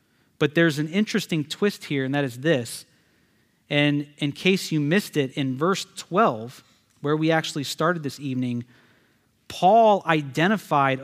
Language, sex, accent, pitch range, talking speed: English, male, American, 125-160 Hz, 145 wpm